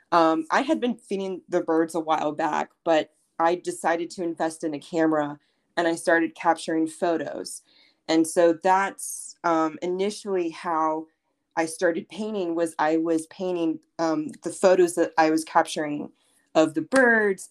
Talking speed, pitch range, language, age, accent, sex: 160 wpm, 160-190 Hz, English, 20-39, American, female